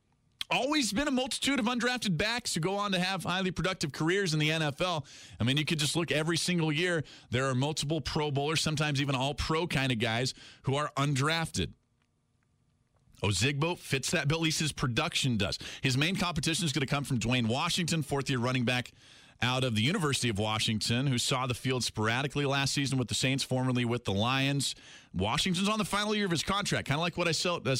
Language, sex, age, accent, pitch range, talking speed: English, male, 40-59, American, 120-165 Hz, 210 wpm